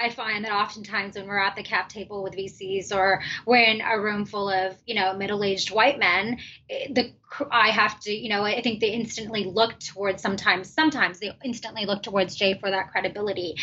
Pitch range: 195-230 Hz